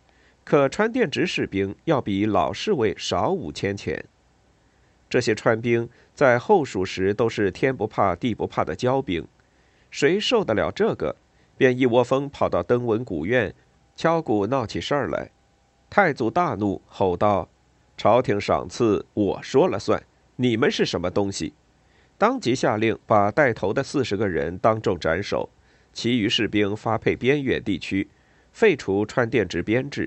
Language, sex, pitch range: Chinese, male, 100-135 Hz